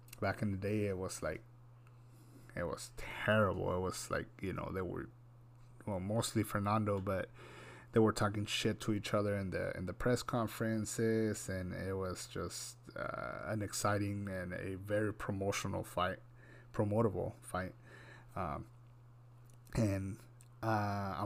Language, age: English, 30-49